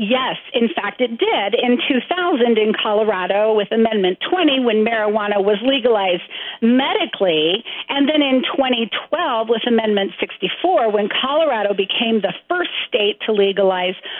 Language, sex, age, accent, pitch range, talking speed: English, female, 40-59, American, 215-300 Hz, 135 wpm